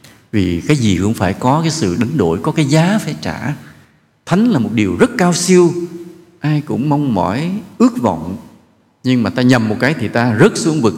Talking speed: 215 wpm